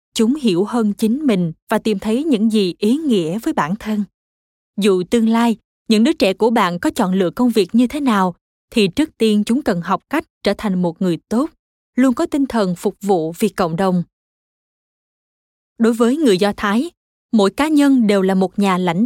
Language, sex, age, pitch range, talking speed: Vietnamese, female, 20-39, 195-245 Hz, 205 wpm